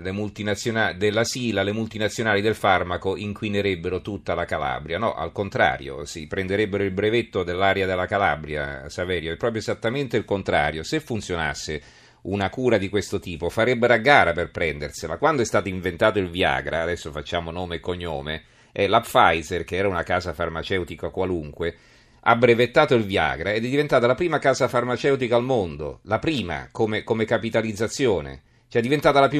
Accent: native